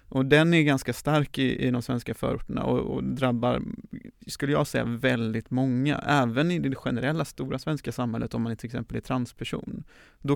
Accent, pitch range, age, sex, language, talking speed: native, 120-140 Hz, 30-49, male, Swedish, 185 wpm